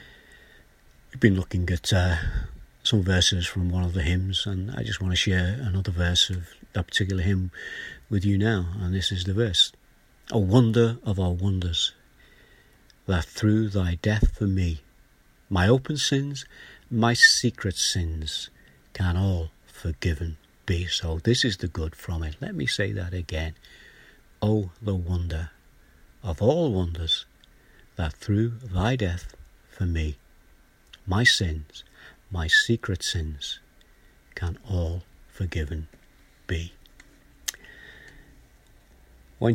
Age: 60-79